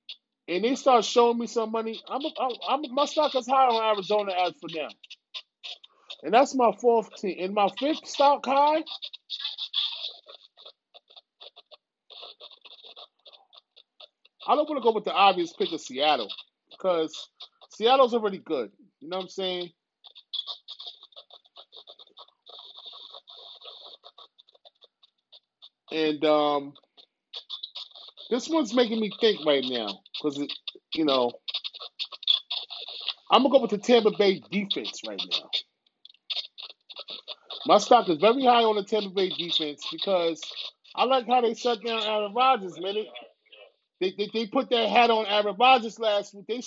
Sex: male